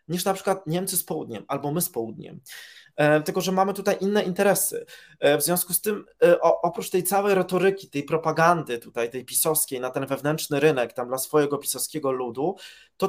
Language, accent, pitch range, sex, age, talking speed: Polish, native, 140-175 Hz, male, 20-39, 195 wpm